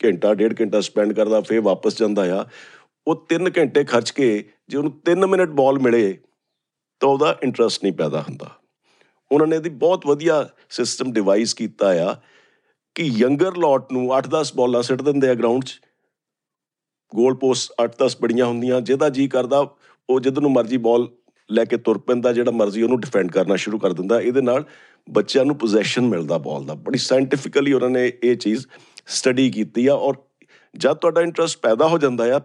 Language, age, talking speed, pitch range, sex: Punjabi, 50-69, 180 wpm, 115-145 Hz, male